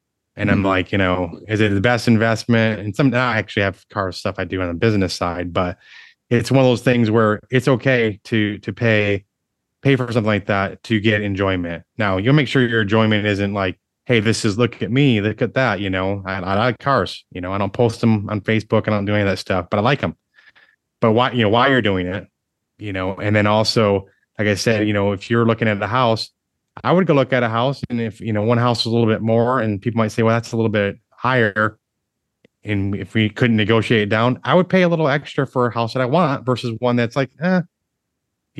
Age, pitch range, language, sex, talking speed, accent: 30-49, 100-120 Hz, English, male, 250 wpm, American